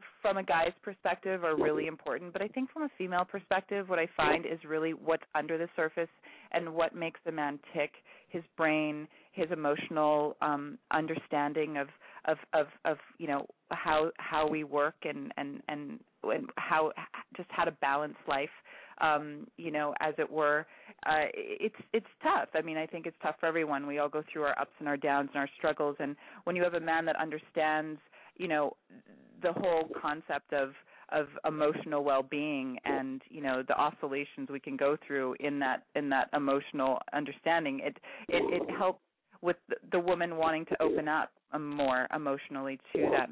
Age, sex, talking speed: 30-49, female, 185 wpm